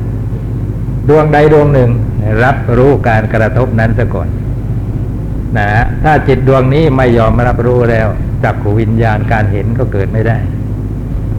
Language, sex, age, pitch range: Thai, male, 60-79, 110-125 Hz